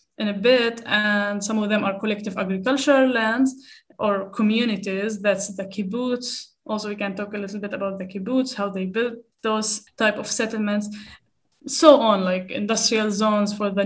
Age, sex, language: 10-29, female, English